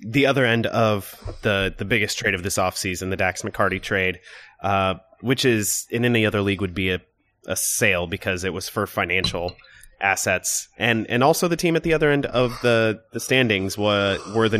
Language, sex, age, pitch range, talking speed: English, male, 30-49, 100-115 Hz, 200 wpm